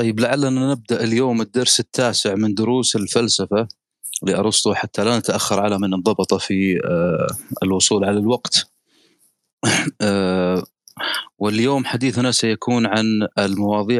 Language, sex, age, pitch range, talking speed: Arabic, male, 30-49, 100-125 Hz, 105 wpm